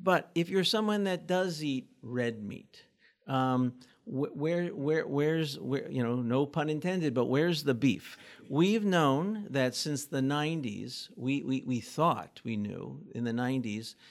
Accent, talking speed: American, 165 wpm